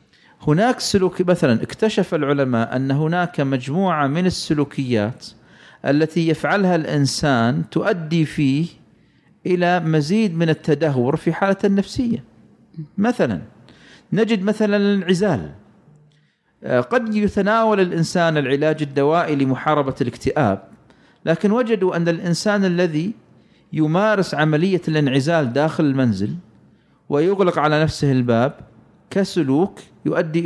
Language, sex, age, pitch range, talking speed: Arabic, male, 40-59, 140-185 Hz, 95 wpm